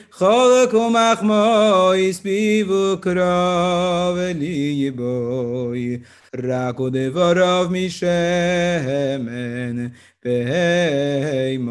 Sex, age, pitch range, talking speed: male, 30-49, 140-190 Hz, 75 wpm